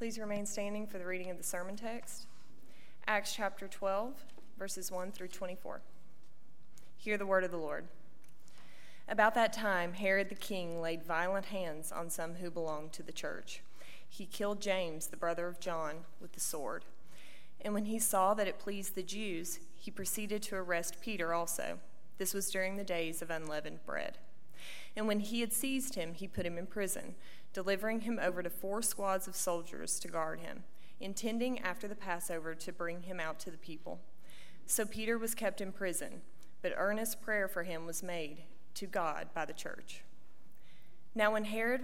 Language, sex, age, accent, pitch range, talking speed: English, female, 20-39, American, 170-210 Hz, 180 wpm